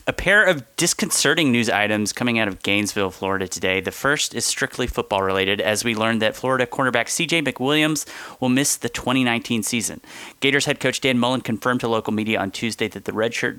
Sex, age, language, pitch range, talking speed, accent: male, 30-49, English, 110-135 Hz, 195 wpm, American